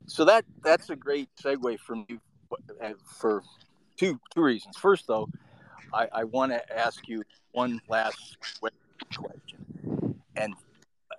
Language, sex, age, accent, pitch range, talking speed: English, male, 40-59, American, 120-155 Hz, 130 wpm